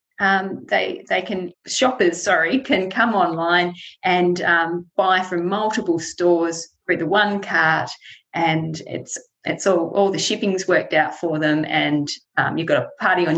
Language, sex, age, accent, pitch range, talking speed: English, female, 30-49, Australian, 160-190 Hz, 165 wpm